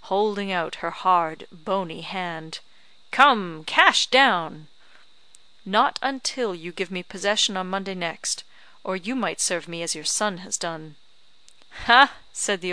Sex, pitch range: female, 175-220 Hz